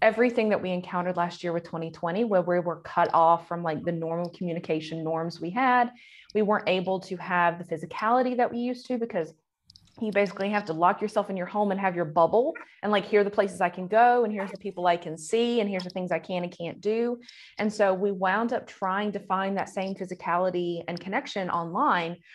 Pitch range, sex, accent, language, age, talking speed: 175-210 Hz, female, American, English, 20-39, 230 wpm